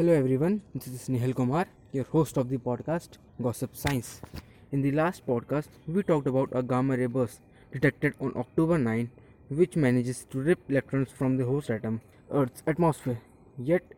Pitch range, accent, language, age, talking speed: 125-145 Hz, Indian, English, 20-39, 170 wpm